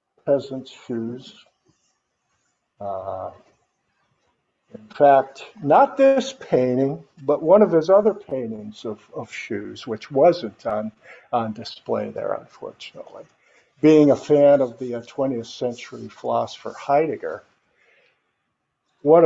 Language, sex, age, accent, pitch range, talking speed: English, male, 50-69, American, 115-140 Hz, 110 wpm